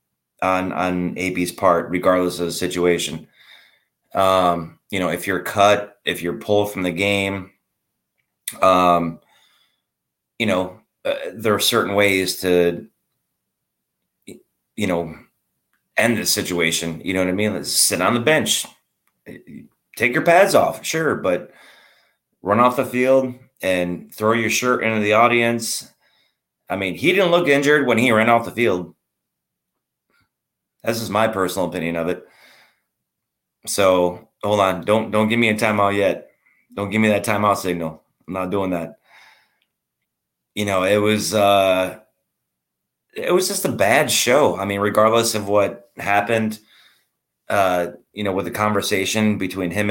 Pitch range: 90-110 Hz